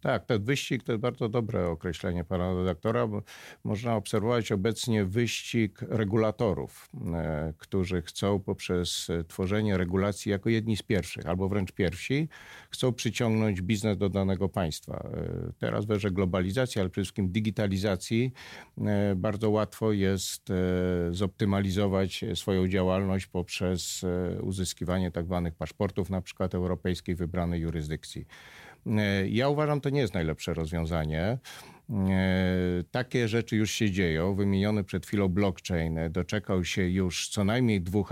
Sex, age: male, 50-69